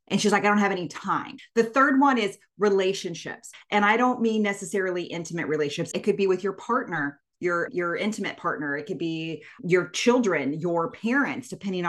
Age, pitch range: 30-49, 165-210 Hz